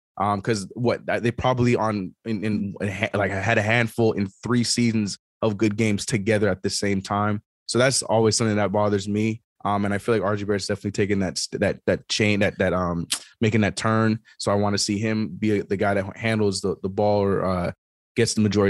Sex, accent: male, American